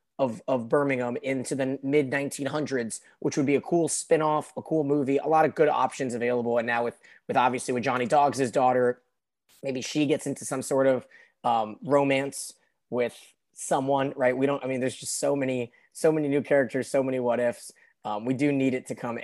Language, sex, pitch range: English, male, 115-145 Hz